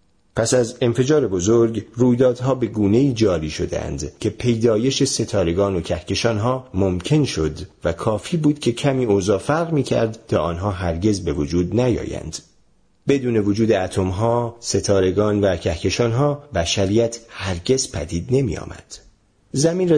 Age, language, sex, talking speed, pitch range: 40-59, Persian, male, 125 wpm, 95-130 Hz